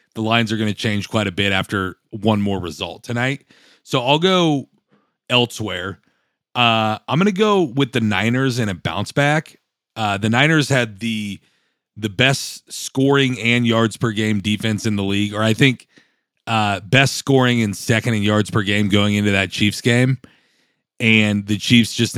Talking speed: 180 wpm